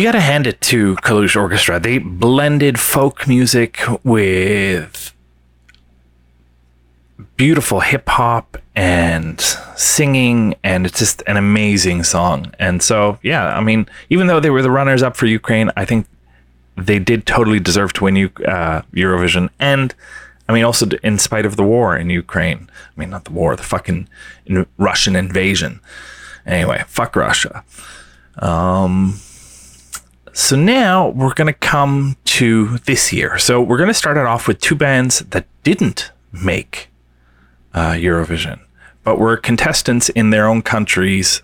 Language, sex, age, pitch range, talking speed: English, male, 30-49, 90-120 Hz, 145 wpm